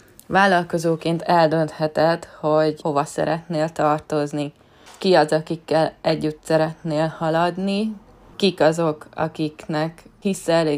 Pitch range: 155-175 Hz